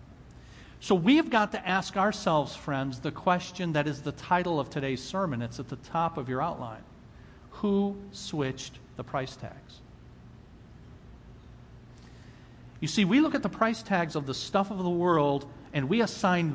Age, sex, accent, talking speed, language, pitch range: 50-69, male, American, 165 wpm, English, 135-190 Hz